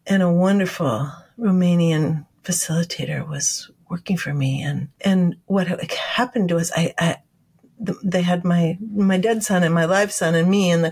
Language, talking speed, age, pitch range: English, 170 wpm, 50-69, 175-225 Hz